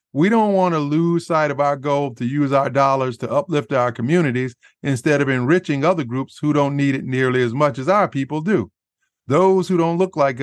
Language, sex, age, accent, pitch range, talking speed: English, male, 50-69, American, 130-160 Hz, 220 wpm